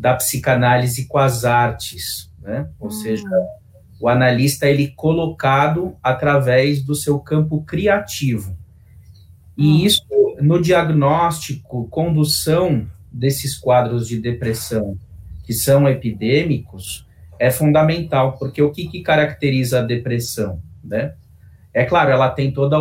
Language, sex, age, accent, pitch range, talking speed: Portuguese, male, 30-49, Brazilian, 110-150 Hz, 115 wpm